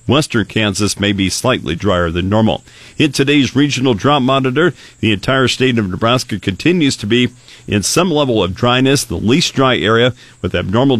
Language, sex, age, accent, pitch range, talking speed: English, male, 50-69, American, 105-125 Hz, 175 wpm